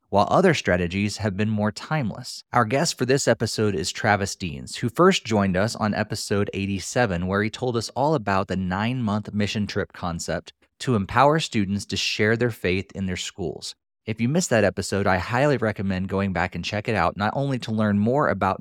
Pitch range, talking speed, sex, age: 95-120 Hz, 205 wpm, male, 30-49